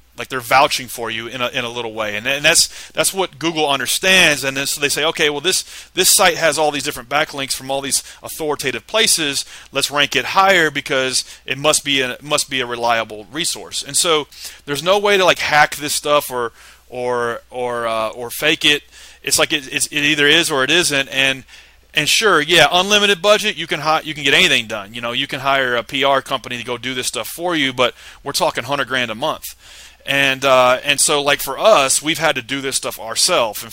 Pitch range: 125-155 Hz